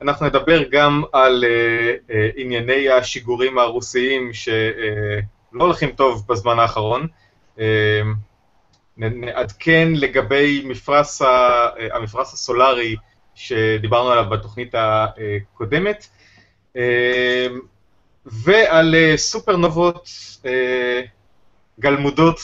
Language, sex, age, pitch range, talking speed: Hebrew, male, 30-49, 110-140 Hz, 60 wpm